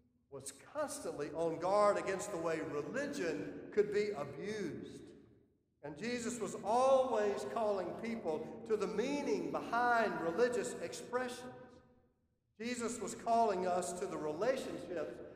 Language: English